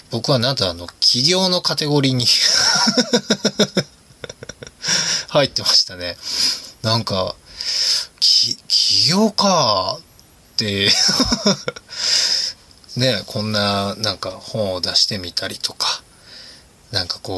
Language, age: Japanese, 20-39